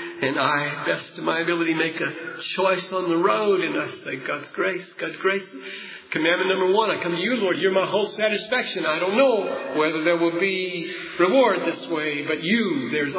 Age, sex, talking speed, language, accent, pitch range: 40-59, male, 200 wpm, English, American, 165-210 Hz